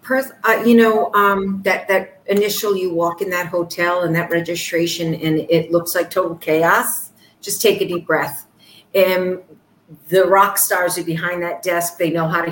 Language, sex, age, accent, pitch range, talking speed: English, female, 50-69, American, 165-200 Hz, 180 wpm